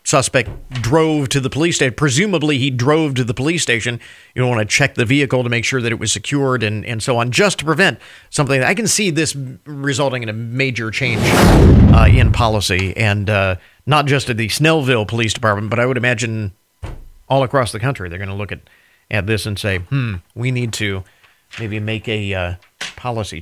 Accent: American